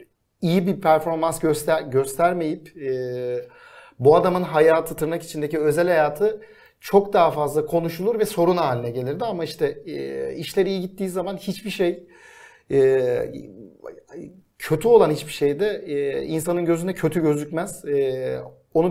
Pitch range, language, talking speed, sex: 150-190 Hz, Turkish, 135 wpm, male